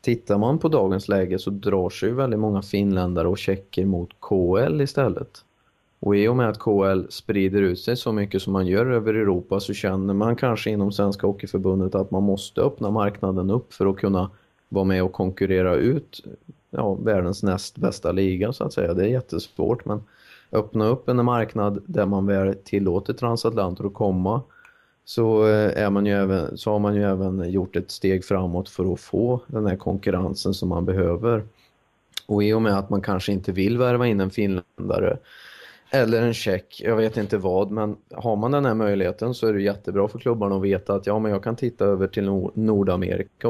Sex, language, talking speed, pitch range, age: male, Swedish, 195 wpm, 95-110 Hz, 30-49